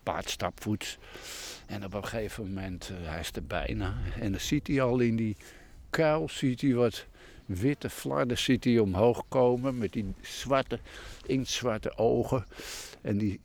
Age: 60-79